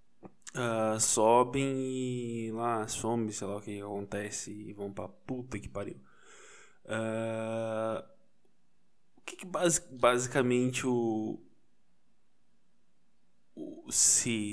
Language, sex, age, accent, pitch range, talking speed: Portuguese, male, 20-39, Brazilian, 115-135 Hz, 85 wpm